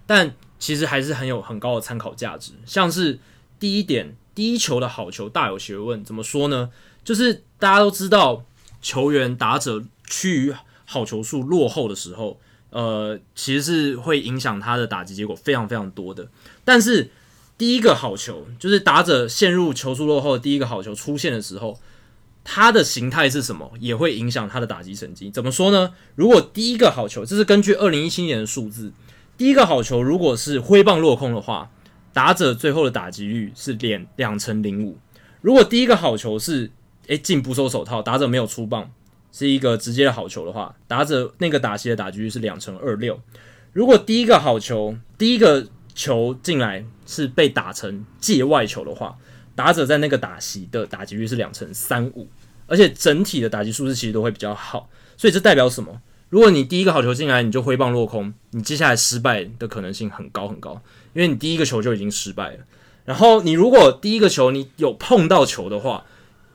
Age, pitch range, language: 20-39, 110-150 Hz, Chinese